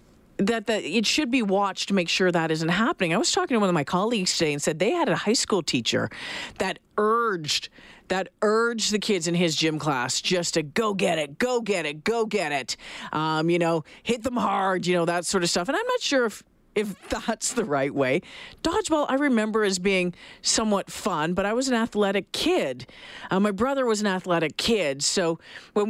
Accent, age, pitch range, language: American, 40-59, 170-235 Hz, English